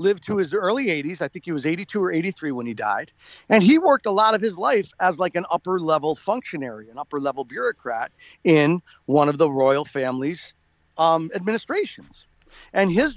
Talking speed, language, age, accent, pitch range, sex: 195 wpm, English, 40-59, American, 155-225 Hz, male